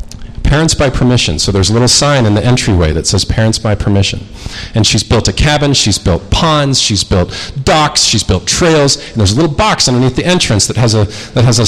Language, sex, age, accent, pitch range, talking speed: English, male, 40-59, American, 105-145 Hz, 225 wpm